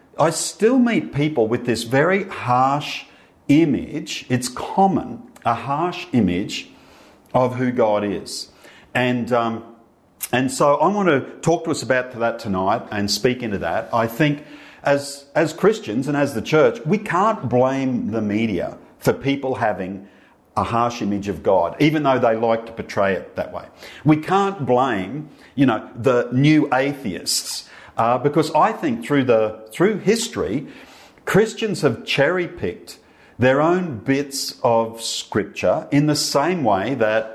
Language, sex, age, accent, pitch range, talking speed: English, male, 50-69, Australian, 115-155 Hz, 155 wpm